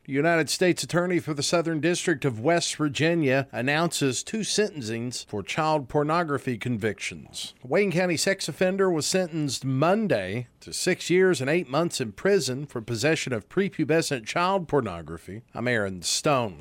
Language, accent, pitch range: English, American, 120-170 Hz